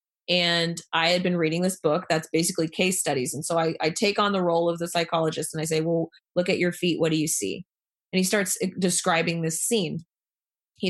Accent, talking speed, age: American, 225 wpm, 20-39